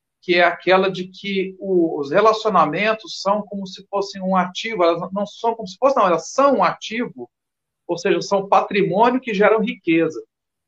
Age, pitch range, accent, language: 50-69, 180-230 Hz, Brazilian, Portuguese